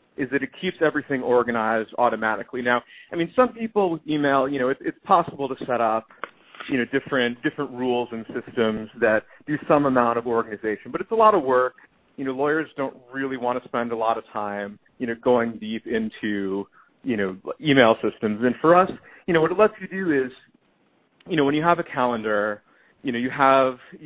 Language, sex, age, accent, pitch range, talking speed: English, male, 30-49, American, 110-140 Hz, 210 wpm